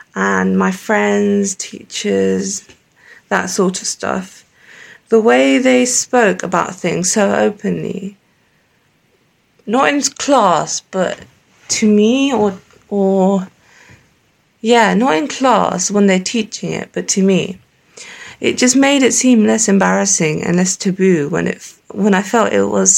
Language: English